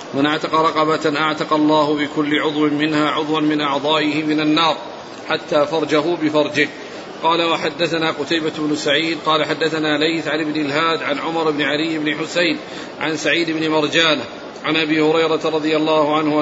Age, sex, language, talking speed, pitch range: 40-59, male, Arabic, 155 wpm, 155-165 Hz